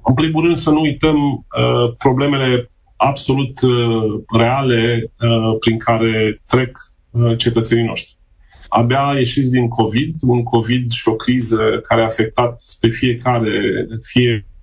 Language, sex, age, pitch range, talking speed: Romanian, male, 30-49, 110-125 Hz, 135 wpm